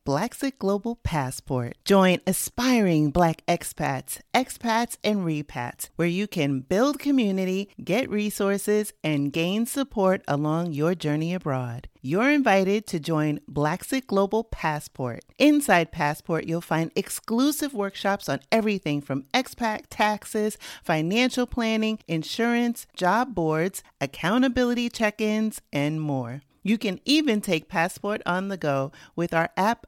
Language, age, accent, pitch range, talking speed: English, 40-59, American, 155-225 Hz, 125 wpm